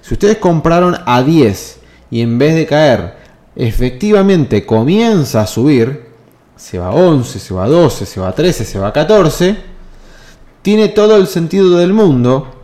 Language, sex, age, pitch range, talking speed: Spanish, male, 30-49, 120-190 Hz, 170 wpm